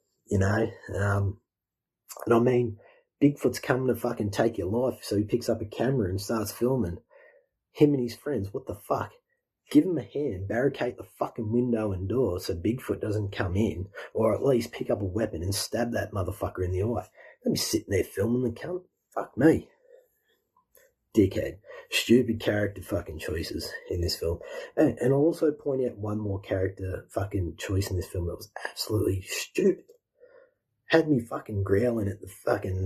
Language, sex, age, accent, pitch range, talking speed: English, male, 30-49, Australian, 100-150 Hz, 185 wpm